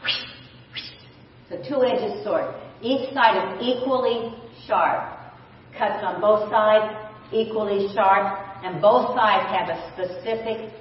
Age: 50-69